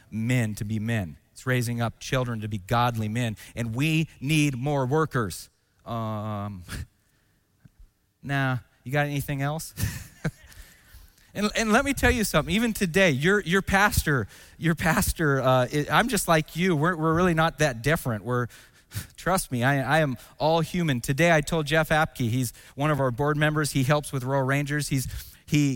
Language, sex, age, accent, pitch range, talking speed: English, male, 30-49, American, 125-180 Hz, 175 wpm